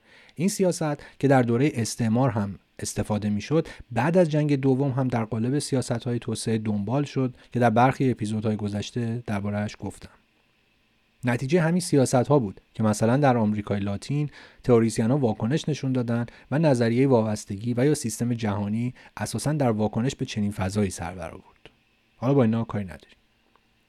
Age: 30-49